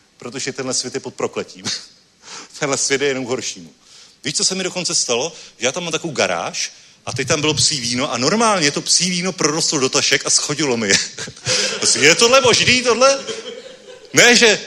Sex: male